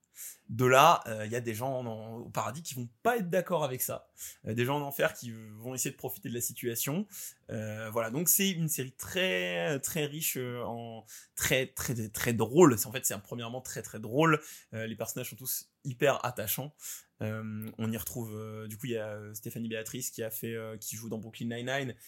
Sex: male